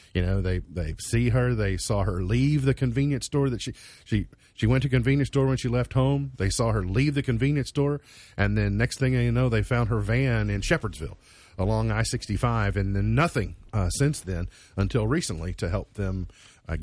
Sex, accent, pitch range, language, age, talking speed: male, American, 100-130 Hz, English, 50-69, 215 wpm